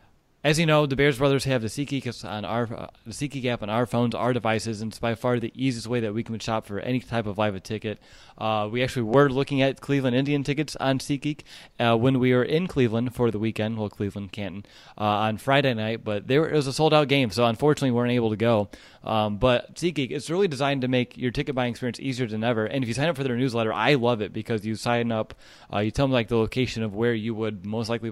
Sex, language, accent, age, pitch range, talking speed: male, English, American, 20-39, 110-130 Hz, 260 wpm